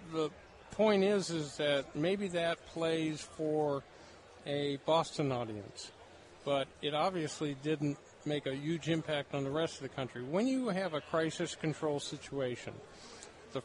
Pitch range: 140-170 Hz